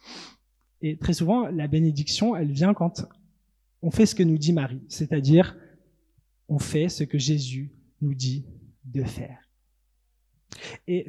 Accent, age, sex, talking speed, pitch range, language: French, 20-39, male, 140 wpm, 145-180 Hz, French